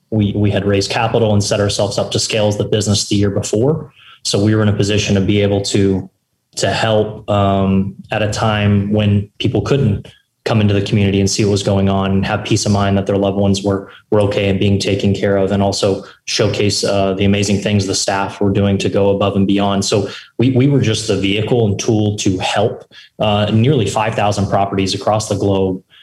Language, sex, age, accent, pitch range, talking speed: English, male, 20-39, American, 100-110 Hz, 225 wpm